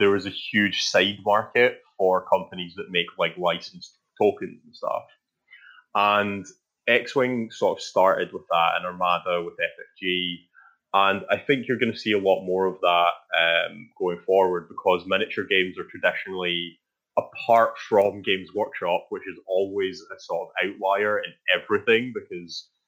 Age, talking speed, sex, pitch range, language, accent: 20-39, 155 wpm, male, 90-130 Hz, English, British